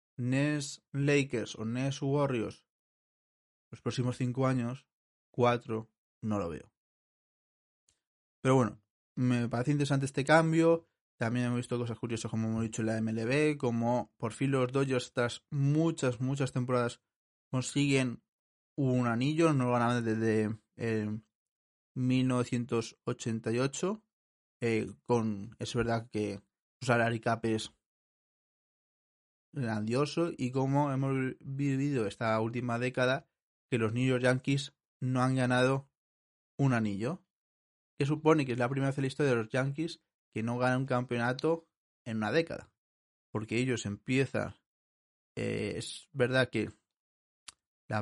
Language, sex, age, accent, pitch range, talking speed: Spanish, male, 20-39, Spanish, 110-135 Hz, 130 wpm